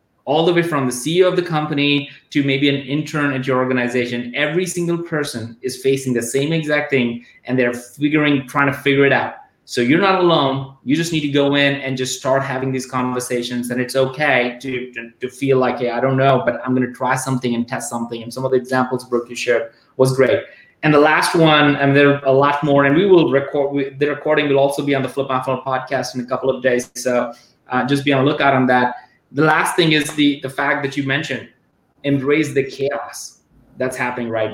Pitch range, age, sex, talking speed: 130-150 Hz, 20-39, male, 235 wpm